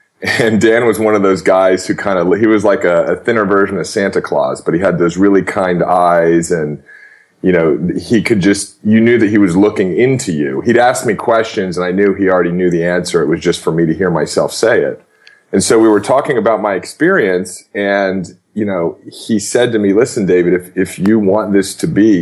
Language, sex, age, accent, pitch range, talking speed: English, male, 30-49, American, 90-105 Hz, 230 wpm